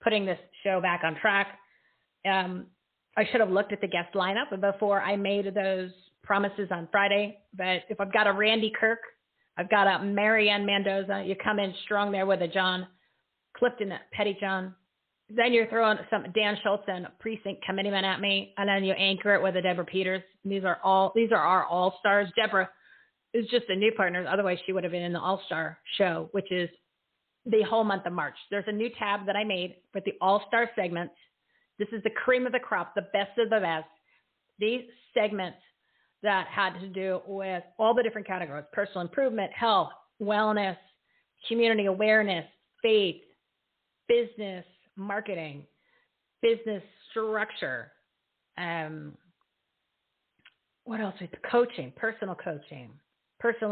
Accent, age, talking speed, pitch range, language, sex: American, 30-49, 165 wpm, 185-215 Hz, English, female